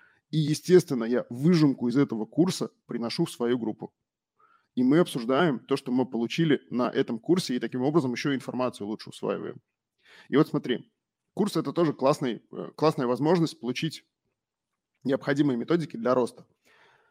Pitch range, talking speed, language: 125-165 Hz, 145 wpm, Russian